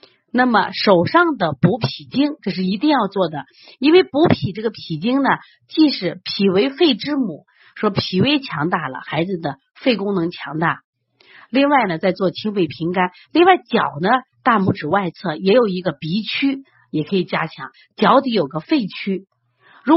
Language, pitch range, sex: Chinese, 165-245 Hz, female